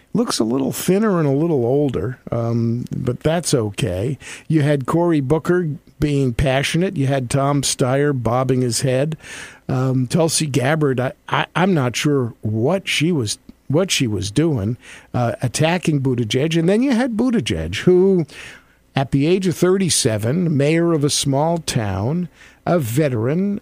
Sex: male